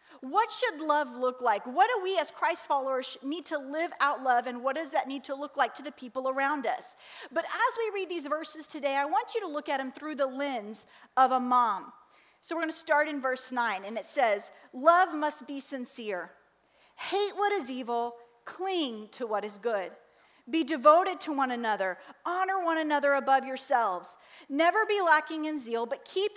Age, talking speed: 40-59, 205 wpm